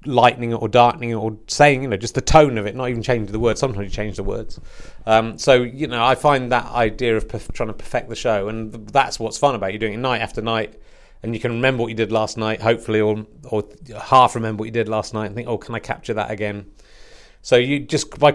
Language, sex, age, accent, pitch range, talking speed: English, male, 30-49, British, 100-115 Hz, 260 wpm